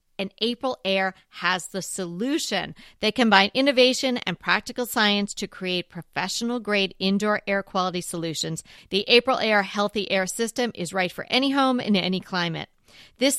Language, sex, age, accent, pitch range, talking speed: English, female, 40-59, American, 180-240 Hz, 150 wpm